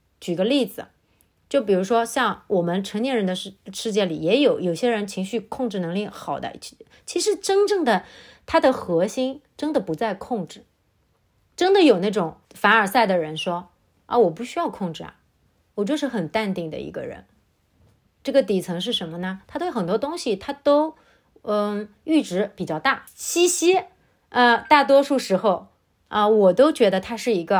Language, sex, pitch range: Chinese, female, 195-290 Hz